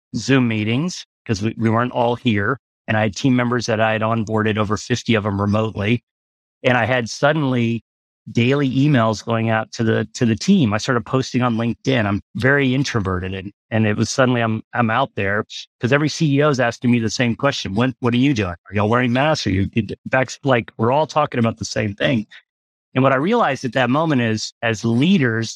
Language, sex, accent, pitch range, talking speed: English, male, American, 110-130 Hz, 215 wpm